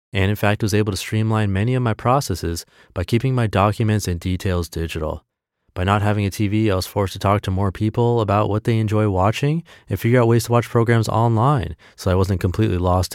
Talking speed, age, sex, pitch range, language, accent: 225 wpm, 30-49, male, 95-120 Hz, English, American